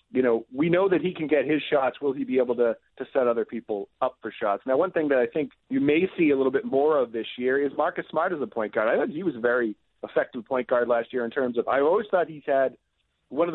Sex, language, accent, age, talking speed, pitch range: male, English, American, 40-59, 290 wpm, 115-145 Hz